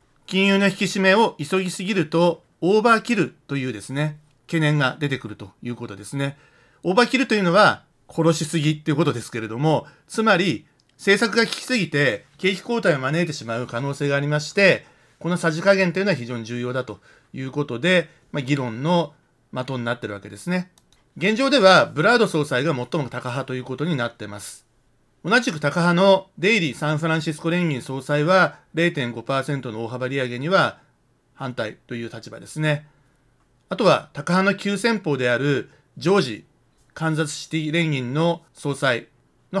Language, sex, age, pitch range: Japanese, male, 40-59, 130-175 Hz